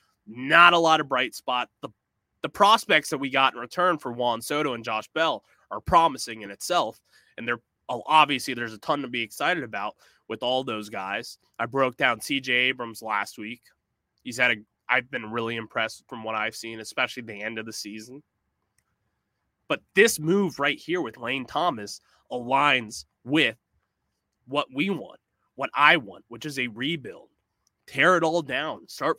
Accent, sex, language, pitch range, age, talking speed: American, male, English, 115-150 Hz, 20-39, 180 wpm